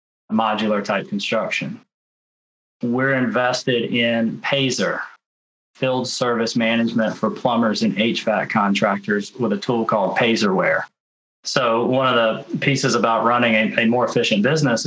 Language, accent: English, American